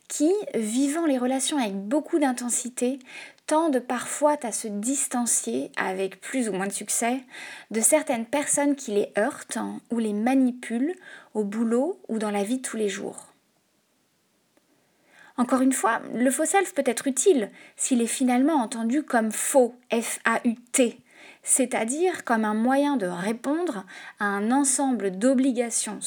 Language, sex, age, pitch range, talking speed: French, female, 20-39, 225-285 Hz, 145 wpm